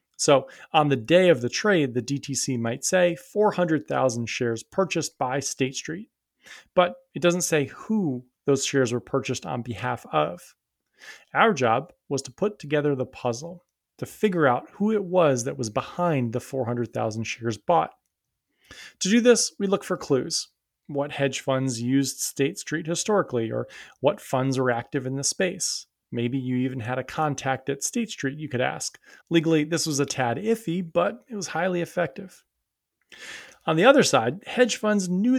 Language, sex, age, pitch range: English, male, 30-49, 130-175 Hz